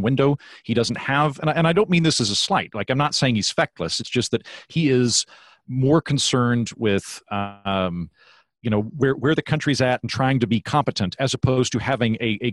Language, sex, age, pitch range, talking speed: English, male, 40-59, 110-140 Hz, 225 wpm